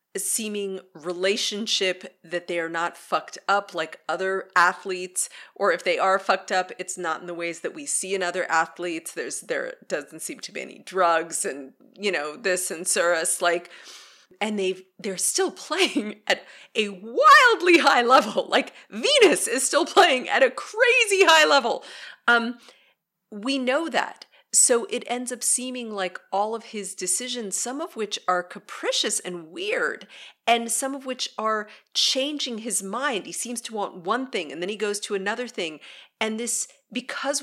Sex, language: female, English